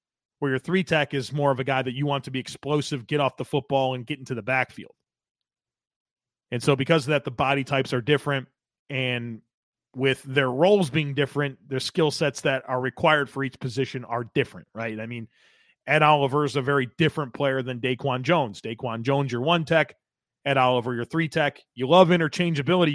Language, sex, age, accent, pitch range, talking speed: English, male, 30-49, American, 130-155 Hz, 195 wpm